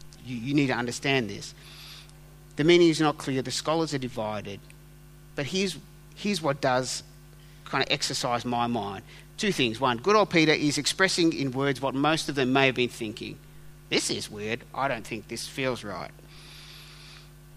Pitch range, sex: 130-160 Hz, male